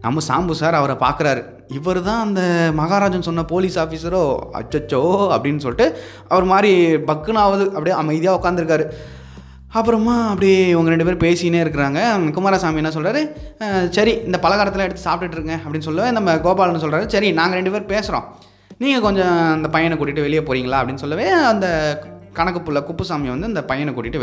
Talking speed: 150 wpm